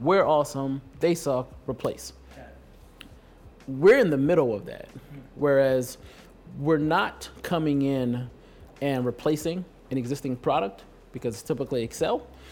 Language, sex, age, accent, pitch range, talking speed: English, male, 20-39, American, 130-155 Hz, 120 wpm